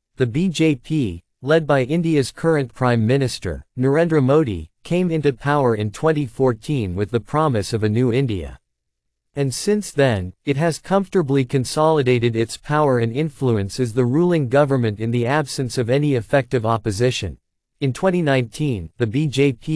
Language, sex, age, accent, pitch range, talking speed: English, male, 50-69, American, 115-150 Hz, 145 wpm